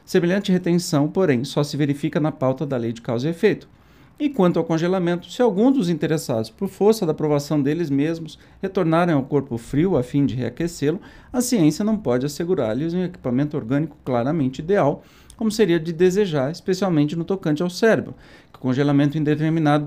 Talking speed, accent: 180 wpm, Brazilian